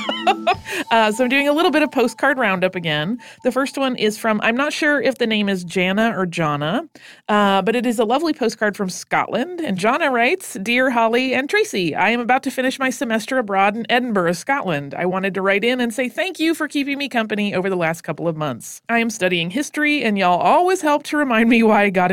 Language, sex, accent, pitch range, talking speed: English, female, American, 190-260 Hz, 235 wpm